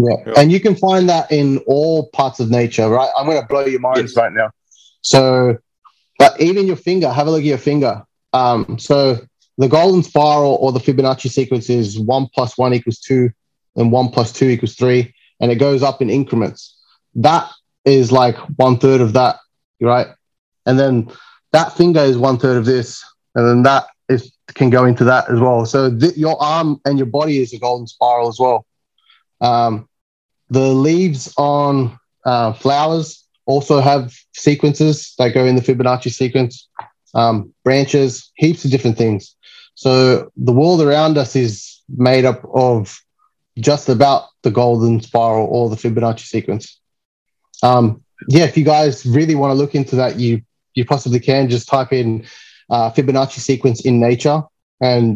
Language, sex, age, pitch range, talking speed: English, male, 20-39, 120-145 Hz, 175 wpm